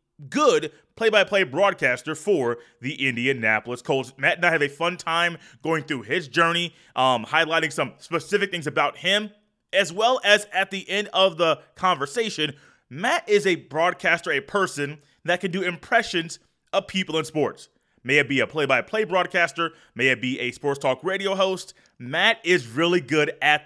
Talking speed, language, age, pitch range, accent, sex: 170 wpm, English, 20-39, 140-185 Hz, American, male